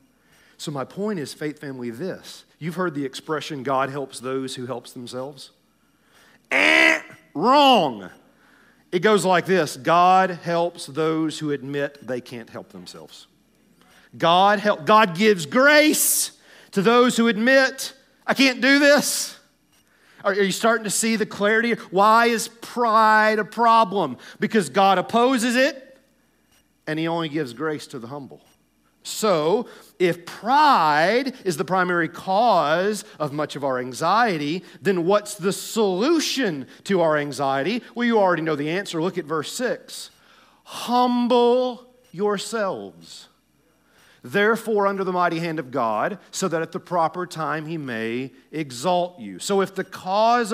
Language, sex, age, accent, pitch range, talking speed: English, male, 40-59, American, 155-220 Hz, 145 wpm